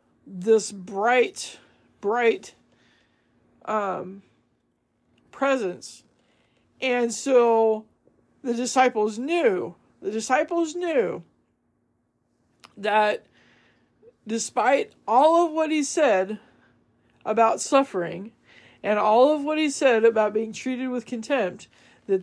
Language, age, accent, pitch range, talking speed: English, 40-59, American, 175-250 Hz, 90 wpm